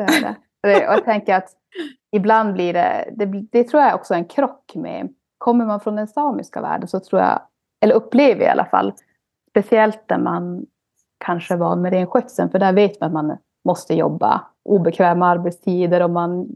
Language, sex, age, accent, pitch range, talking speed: Swedish, female, 30-49, native, 180-220 Hz, 190 wpm